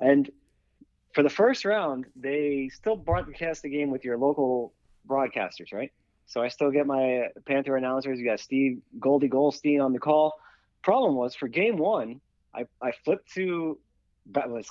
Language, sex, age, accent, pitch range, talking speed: English, male, 30-49, American, 115-150 Hz, 165 wpm